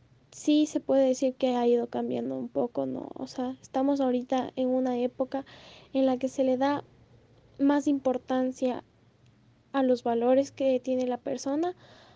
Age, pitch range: 10-29, 245-265 Hz